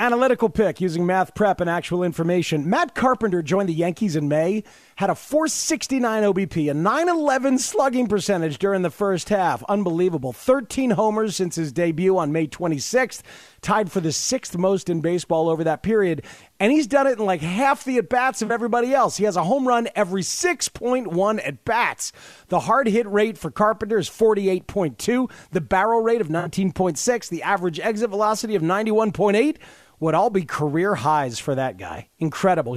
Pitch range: 165-215 Hz